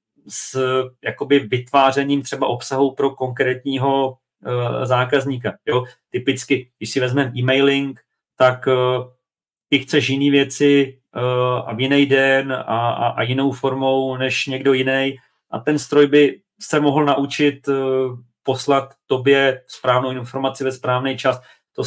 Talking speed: 135 wpm